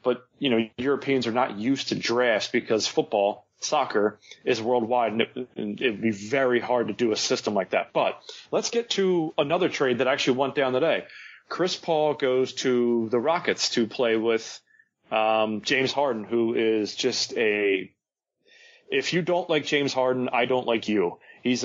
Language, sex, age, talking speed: English, male, 30-49, 180 wpm